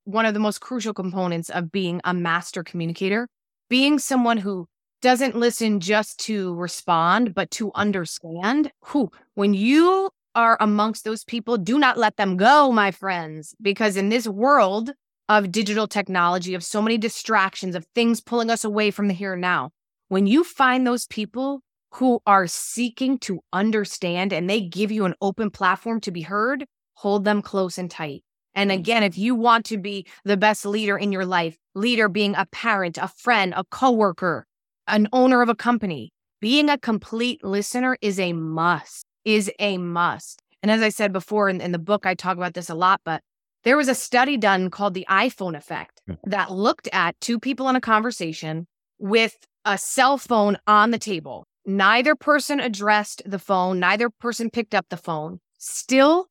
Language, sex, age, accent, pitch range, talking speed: English, female, 20-39, American, 185-235 Hz, 180 wpm